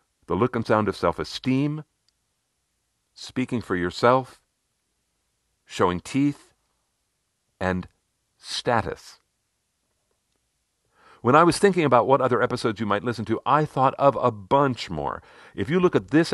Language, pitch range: English, 90-130 Hz